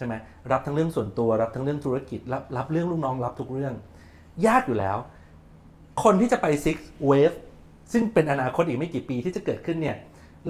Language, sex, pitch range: Thai, male, 120-165 Hz